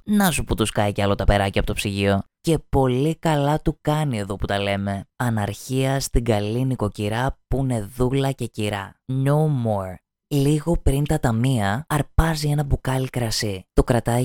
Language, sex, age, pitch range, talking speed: Greek, female, 20-39, 105-140 Hz, 175 wpm